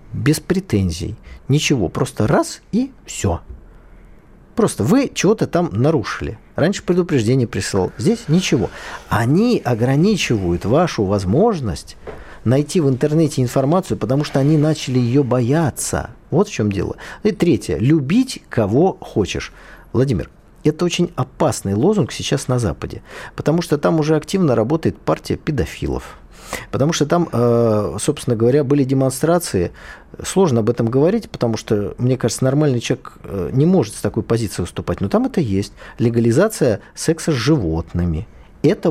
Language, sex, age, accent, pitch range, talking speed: Russian, male, 40-59, native, 110-160 Hz, 135 wpm